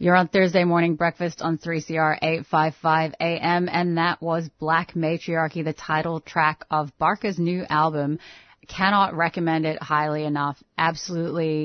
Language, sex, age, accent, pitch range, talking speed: English, female, 30-49, American, 145-175 Hz, 140 wpm